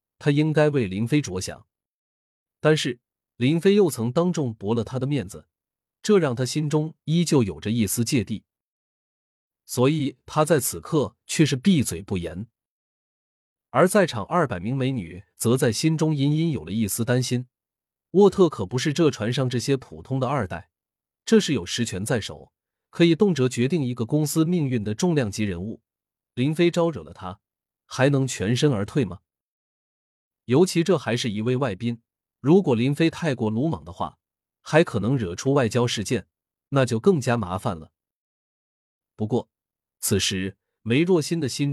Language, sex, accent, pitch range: Chinese, male, native, 100-150 Hz